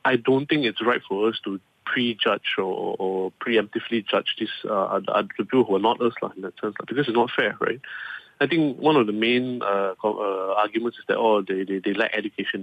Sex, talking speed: male, 215 wpm